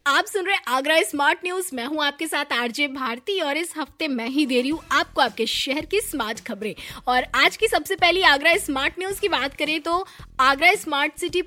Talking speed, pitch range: 215 wpm, 250-320 Hz